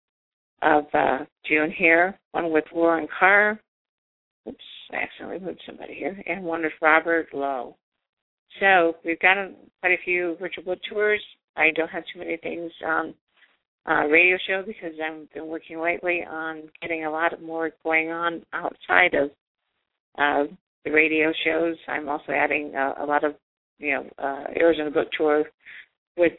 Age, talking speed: 50-69, 160 wpm